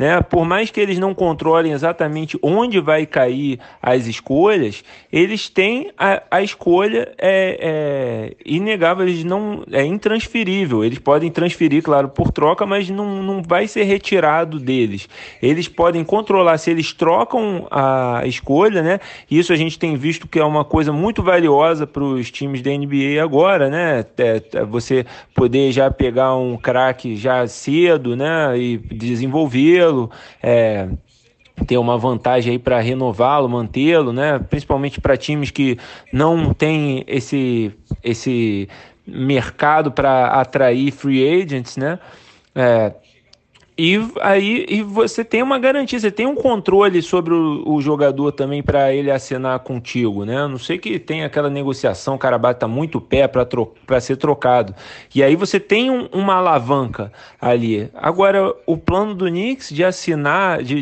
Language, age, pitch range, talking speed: Portuguese, 20-39, 130-175 Hz, 145 wpm